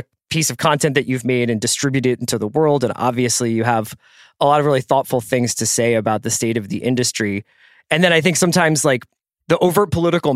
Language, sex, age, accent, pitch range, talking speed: English, male, 20-39, American, 120-155 Hz, 220 wpm